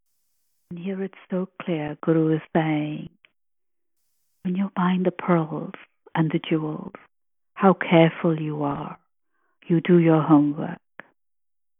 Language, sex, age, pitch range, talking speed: English, female, 50-69, 165-195 Hz, 120 wpm